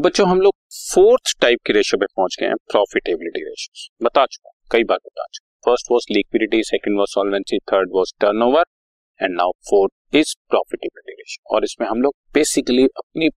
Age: 40-59